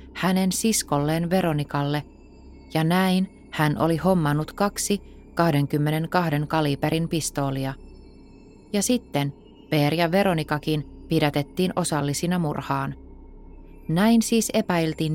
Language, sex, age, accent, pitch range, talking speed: Finnish, female, 30-49, native, 145-185 Hz, 90 wpm